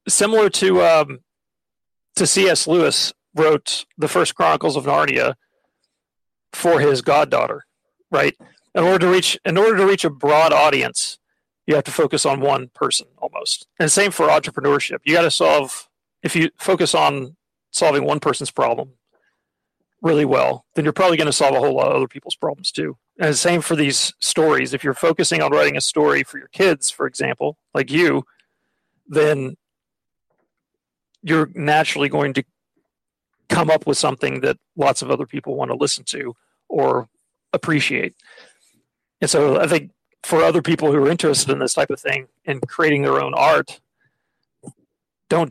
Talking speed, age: 170 wpm, 40-59